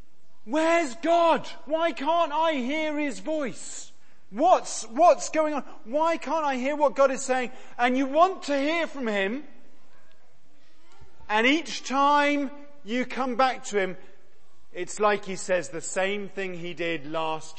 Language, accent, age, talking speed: English, British, 40-59, 155 wpm